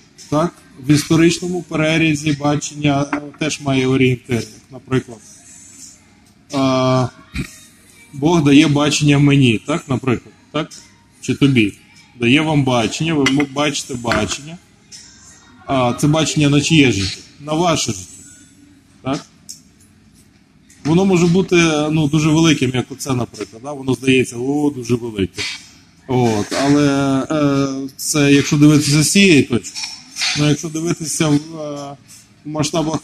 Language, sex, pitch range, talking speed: Ukrainian, male, 125-155 Hz, 115 wpm